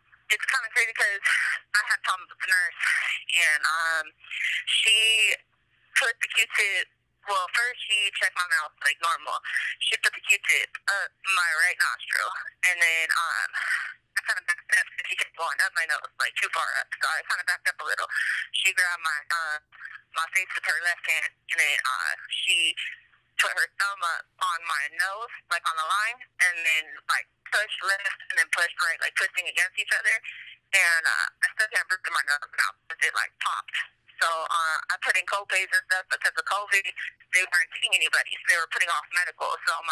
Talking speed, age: 205 wpm, 20-39